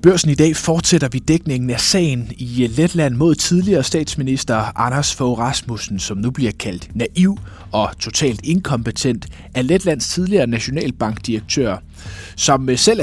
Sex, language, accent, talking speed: male, Danish, native, 140 wpm